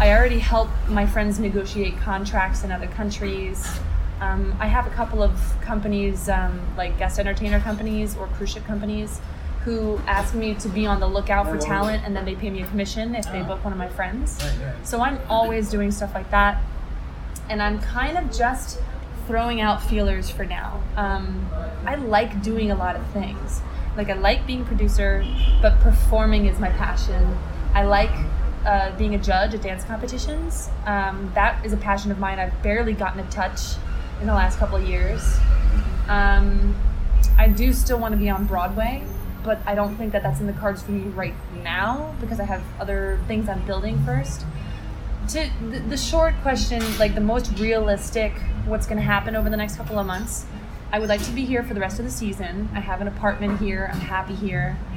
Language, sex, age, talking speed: English, female, 20-39, 195 wpm